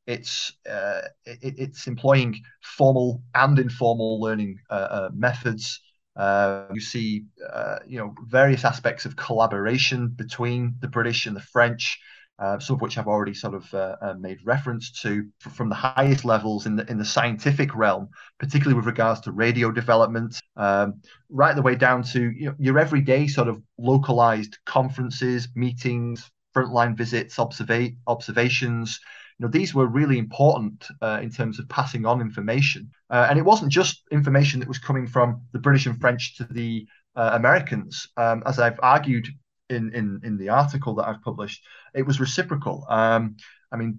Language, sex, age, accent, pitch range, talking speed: English, male, 30-49, British, 110-130 Hz, 170 wpm